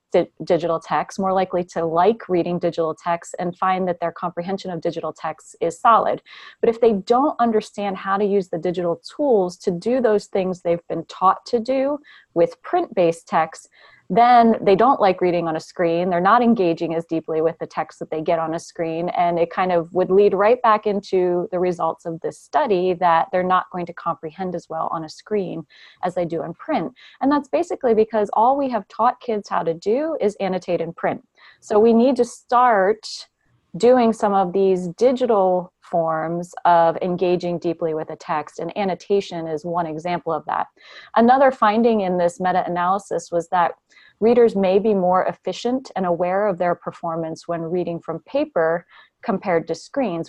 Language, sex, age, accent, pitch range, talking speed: English, female, 30-49, American, 170-215 Hz, 190 wpm